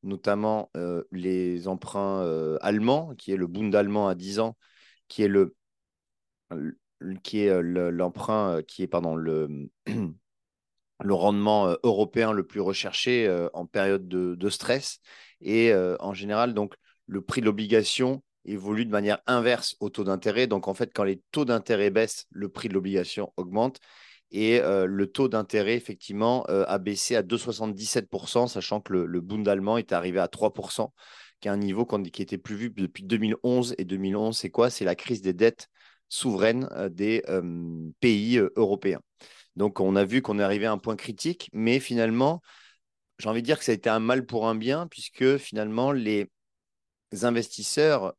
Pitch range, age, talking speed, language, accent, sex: 95-120 Hz, 30-49, 165 wpm, French, French, male